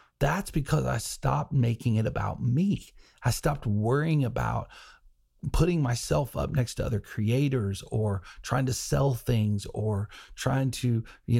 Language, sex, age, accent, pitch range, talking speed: English, male, 40-59, American, 105-140 Hz, 145 wpm